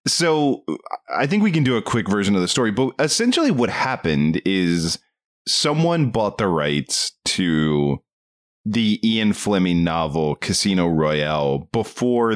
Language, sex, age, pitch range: English, male, 30-49, 80-115 Hz